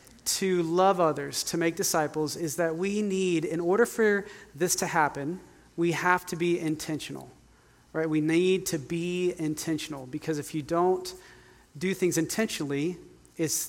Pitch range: 155-185 Hz